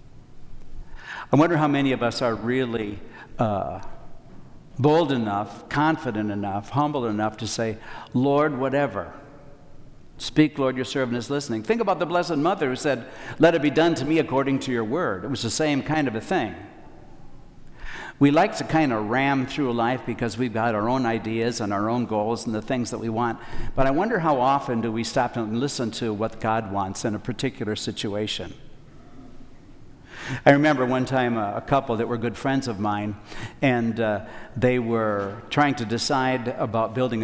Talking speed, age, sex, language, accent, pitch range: 185 wpm, 60-79, male, English, American, 115-140 Hz